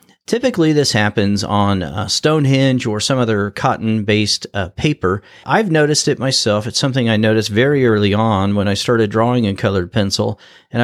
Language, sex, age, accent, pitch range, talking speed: English, male, 40-59, American, 105-135 Hz, 170 wpm